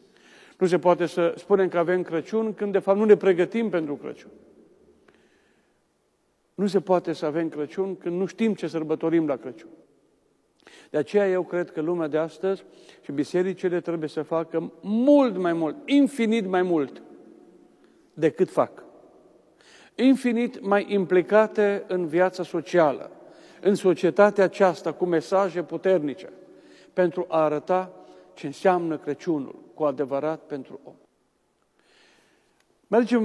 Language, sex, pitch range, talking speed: Romanian, male, 165-200 Hz, 130 wpm